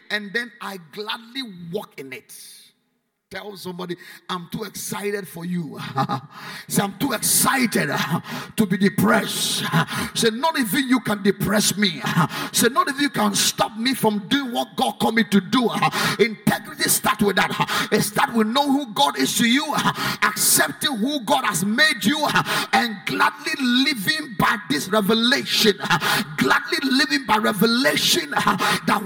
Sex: male